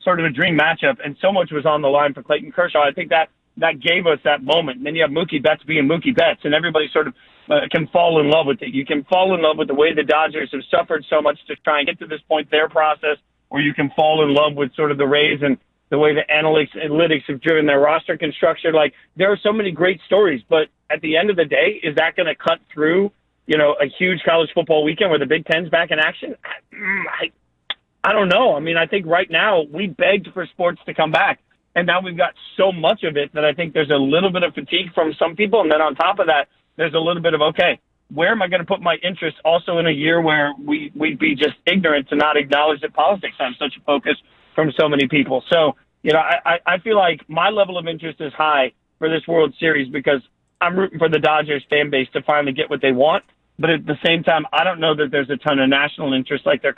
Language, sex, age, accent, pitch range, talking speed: English, male, 40-59, American, 150-175 Hz, 265 wpm